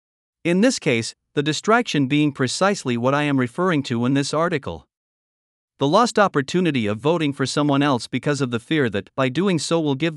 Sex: male